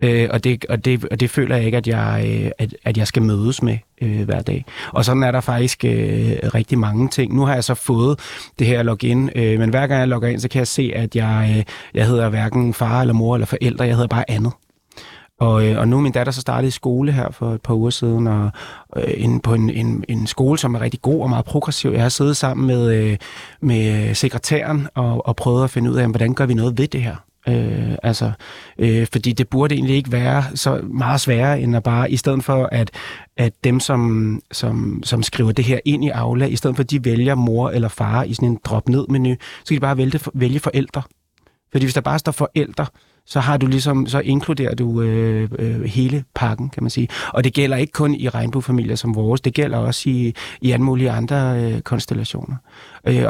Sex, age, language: male, 30-49, Danish